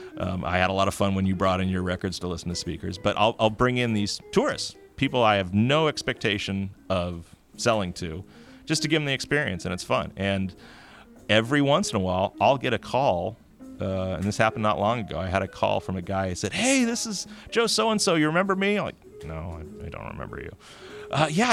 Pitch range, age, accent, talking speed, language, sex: 95-145 Hz, 40-59, American, 235 wpm, English, male